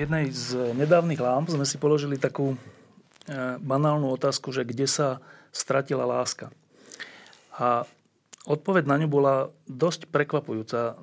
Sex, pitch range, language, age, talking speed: male, 130-155 Hz, Slovak, 40-59, 120 wpm